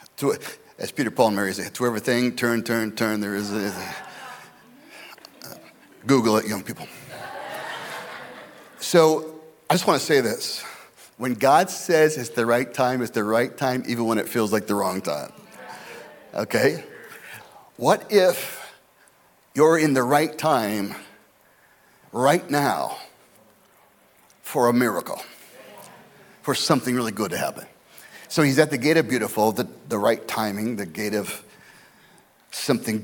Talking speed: 140 wpm